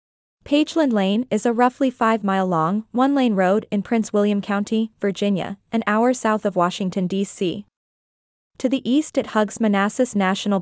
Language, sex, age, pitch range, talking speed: Vietnamese, female, 20-39, 200-245 Hz, 145 wpm